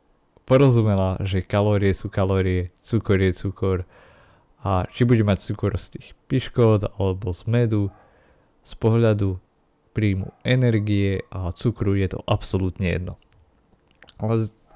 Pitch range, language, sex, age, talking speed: 95-105 Hz, Slovak, male, 30-49, 120 wpm